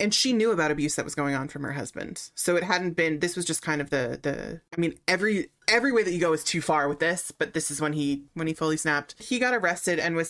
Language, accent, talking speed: English, American, 290 wpm